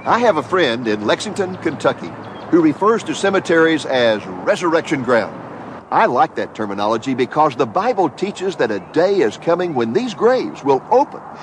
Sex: male